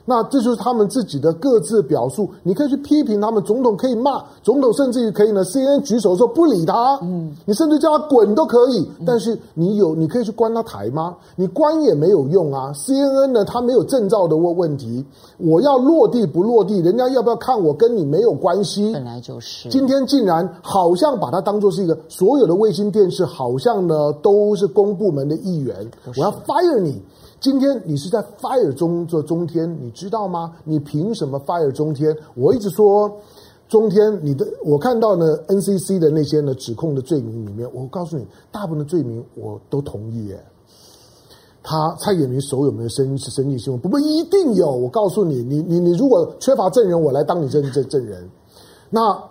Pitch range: 150-235 Hz